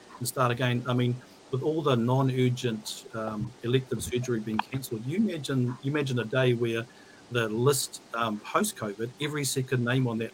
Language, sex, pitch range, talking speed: English, male, 115-130 Hz, 175 wpm